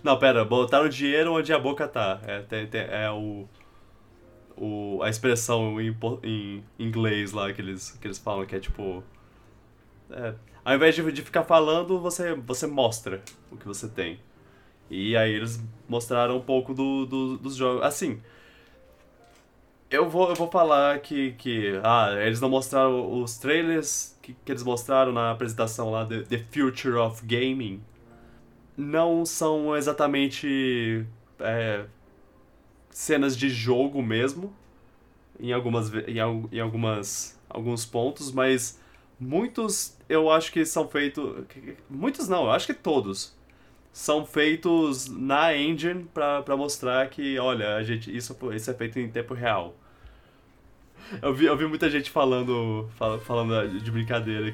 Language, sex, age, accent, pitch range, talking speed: Portuguese, male, 20-39, Brazilian, 110-140 Hz, 140 wpm